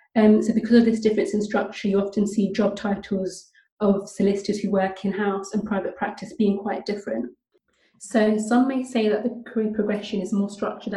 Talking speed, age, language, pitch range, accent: 190 wpm, 30-49, English, 195-220 Hz, British